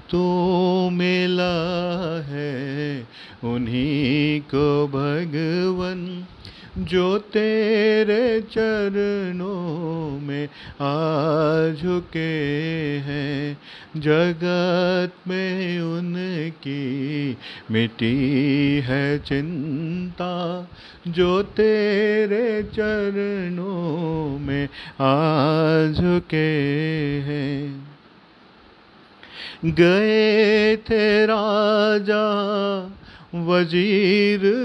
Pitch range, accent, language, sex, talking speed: 150-185 Hz, native, Hindi, male, 50 wpm